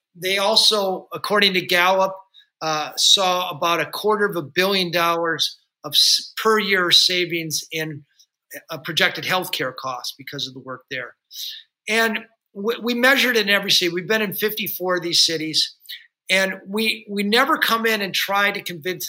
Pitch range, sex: 160-200 Hz, male